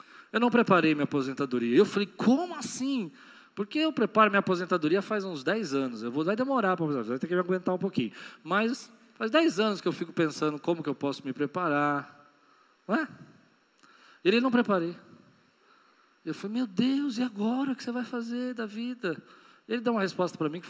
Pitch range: 150-205 Hz